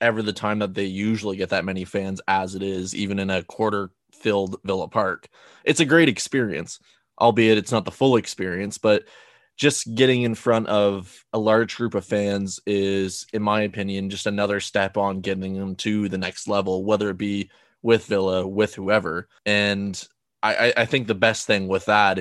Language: English